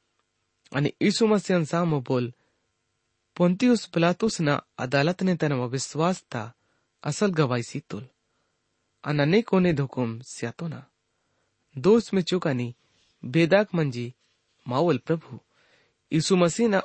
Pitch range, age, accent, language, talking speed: 120-180 Hz, 30-49, Indian, English, 100 wpm